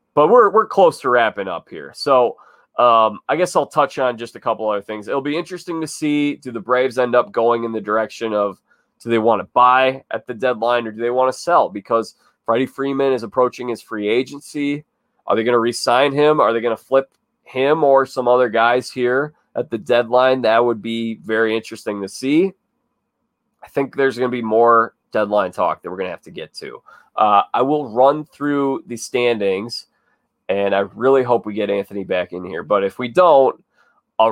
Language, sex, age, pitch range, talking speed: English, male, 20-39, 110-135 Hz, 215 wpm